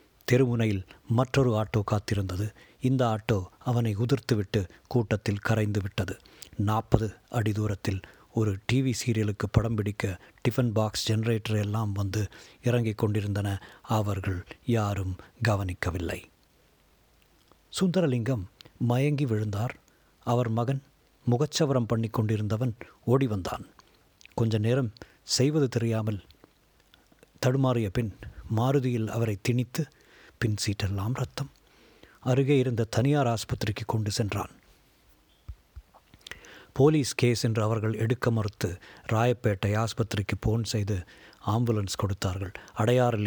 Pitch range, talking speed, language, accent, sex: 105-120 Hz, 95 wpm, Tamil, native, male